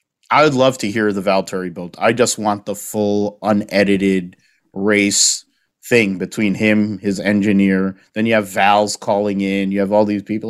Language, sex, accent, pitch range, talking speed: English, male, American, 90-100 Hz, 175 wpm